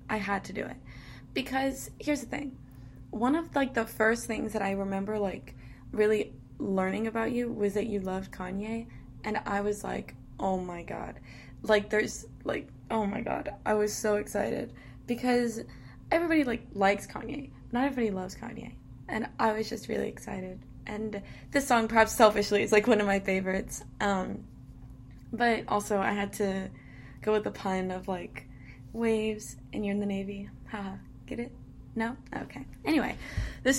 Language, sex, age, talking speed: English, female, 20-39, 170 wpm